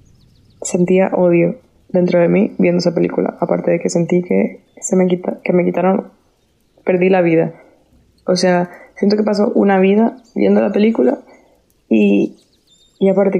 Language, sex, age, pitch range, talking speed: Spanish, female, 20-39, 180-205 Hz, 155 wpm